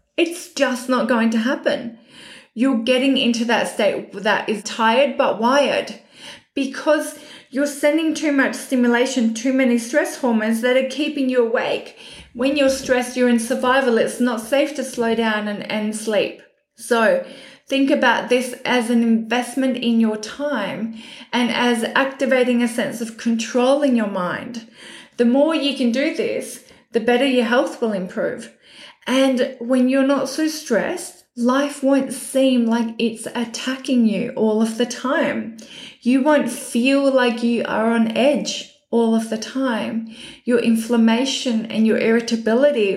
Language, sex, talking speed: English, female, 155 wpm